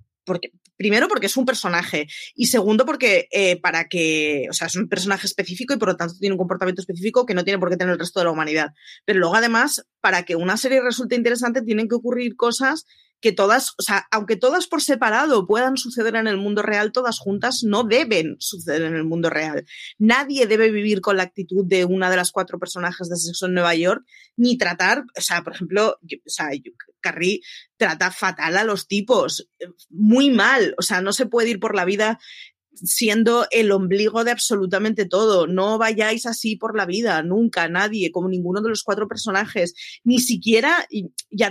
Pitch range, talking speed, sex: 185-235 Hz, 205 wpm, female